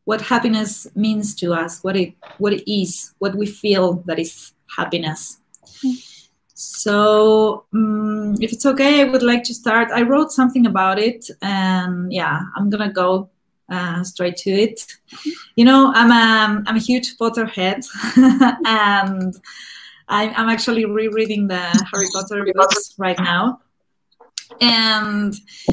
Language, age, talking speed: Spanish, 20-39, 140 wpm